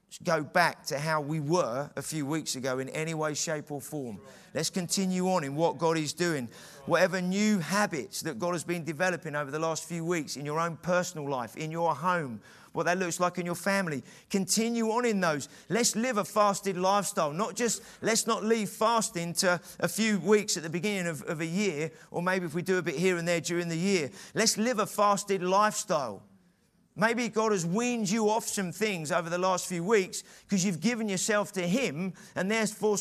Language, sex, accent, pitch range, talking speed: English, male, British, 165-210 Hz, 215 wpm